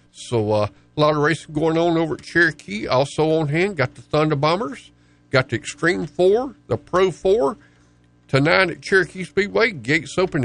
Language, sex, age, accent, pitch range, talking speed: English, male, 50-69, American, 120-195 Hz, 180 wpm